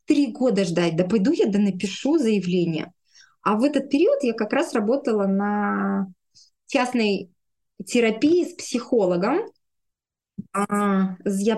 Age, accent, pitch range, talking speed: 20-39, native, 205-270 Hz, 120 wpm